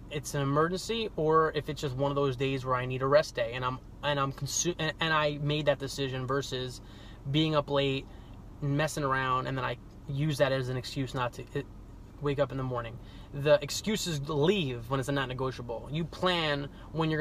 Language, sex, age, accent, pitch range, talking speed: English, male, 20-39, American, 130-155 Hz, 215 wpm